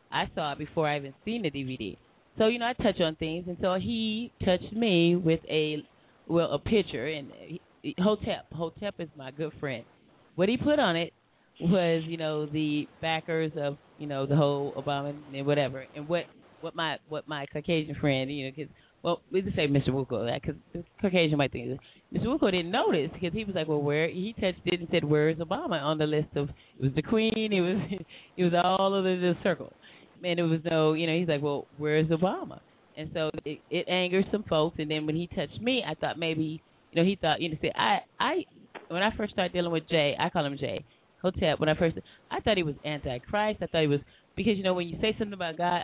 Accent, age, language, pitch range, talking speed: American, 30-49, English, 150-185 Hz, 225 wpm